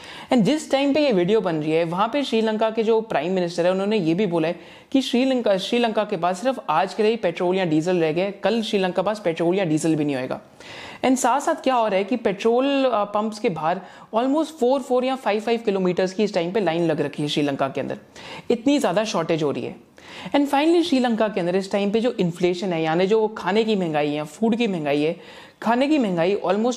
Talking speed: 235 wpm